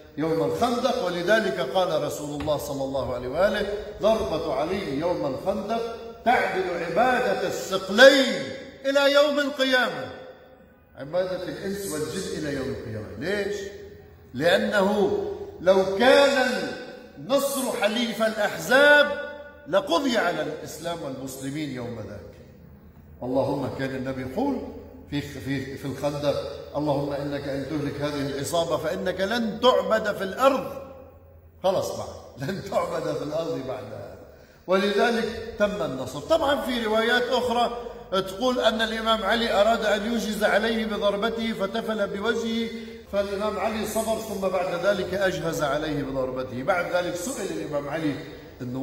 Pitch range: 145-230 Hz